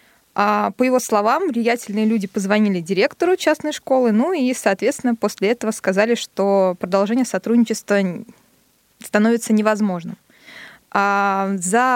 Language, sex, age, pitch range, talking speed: Russian, female, 20-39, 200-235 Hz, 105 wpm